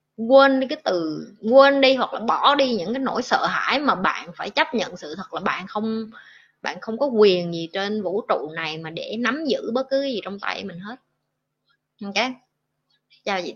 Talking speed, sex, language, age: 210 wpm, female, Vietnamese, 20-39